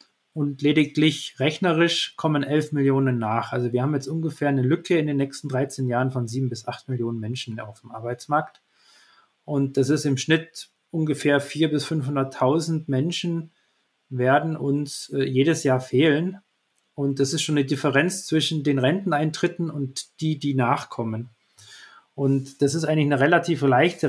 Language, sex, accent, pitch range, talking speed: German, male, German, 130-155 Hz, 160 wpm